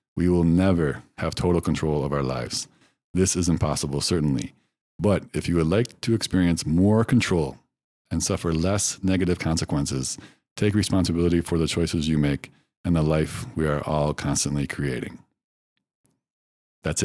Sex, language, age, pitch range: male, English, 50-69, 85-105 Hz